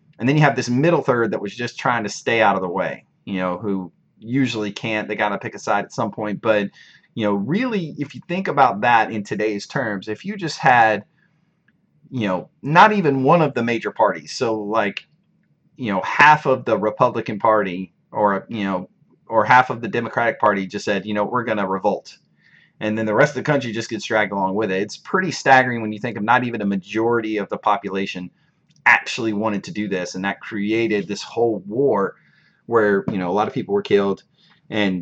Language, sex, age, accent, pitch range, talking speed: English, male, 30-49, American, 105-135 Hz, 225 wpm